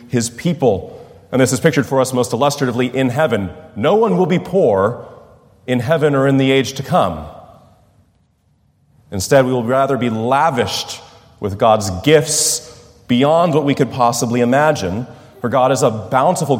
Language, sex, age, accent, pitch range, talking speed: English, male, 30-49, American, 110-135 Hz, 165 wpm